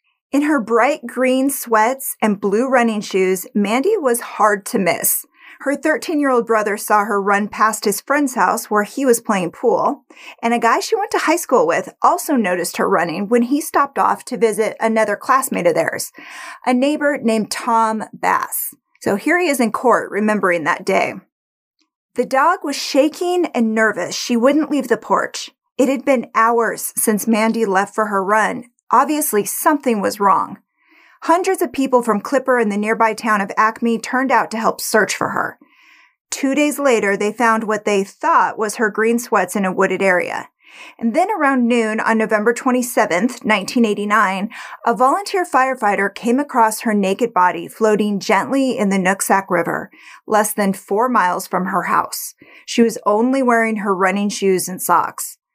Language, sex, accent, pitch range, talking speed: English, female, American, 210-270 Hz, 175 wpm